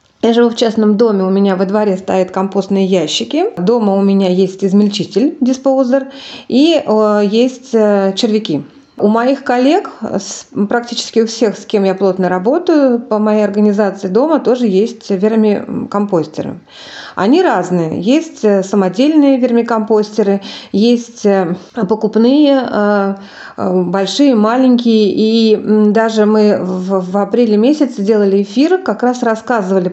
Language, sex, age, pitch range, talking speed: Russian, female, 30-49, 195-240 Hz, 115 wpm